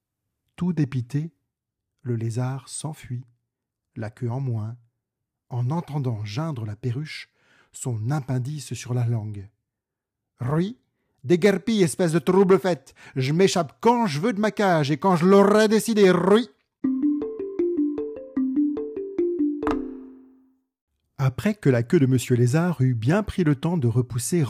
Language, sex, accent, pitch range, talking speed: French, male, French, 120-175 Hz, 135 wpm